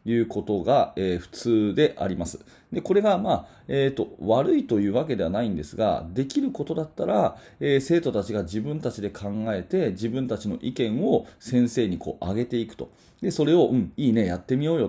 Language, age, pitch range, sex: Japanese, 30-49, 100-140 Hz, male